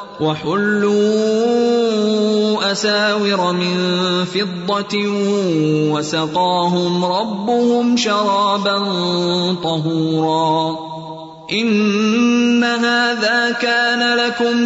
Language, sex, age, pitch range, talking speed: Urdu, male, 20-39, 180-235 Hz, 50 wpm